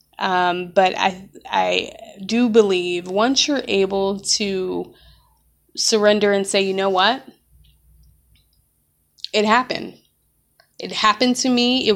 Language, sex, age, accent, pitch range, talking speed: English, female, 20-39, American, 175-215 Hz, 115 wpm